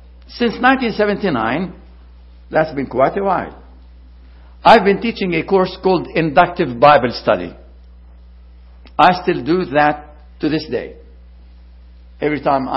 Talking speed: 115 wpm